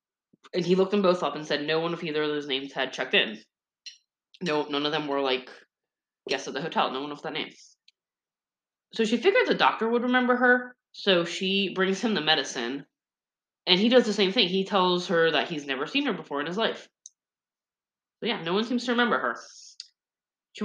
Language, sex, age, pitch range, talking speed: English, female, 20-39, 145-190 Hz, 215 wpm